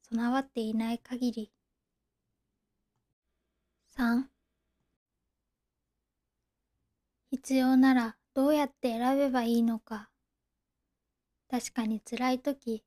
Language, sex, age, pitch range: Japanese, female, 20-39, 230-265 Hz